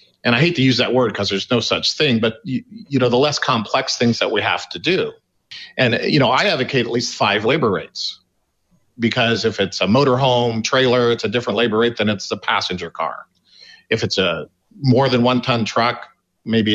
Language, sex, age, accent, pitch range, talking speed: English, male, 50-69, American, 110-130 Hz, 215 wpm